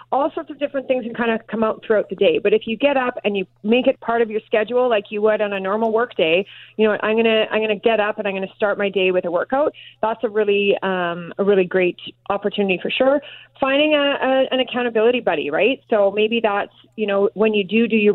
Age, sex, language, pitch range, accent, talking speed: 30-49, female, English, 200-240 Hz, American, 260 wpm